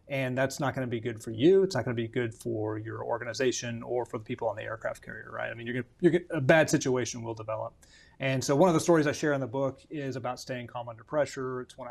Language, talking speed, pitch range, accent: English, 285 wpm, 120-140 Hz, American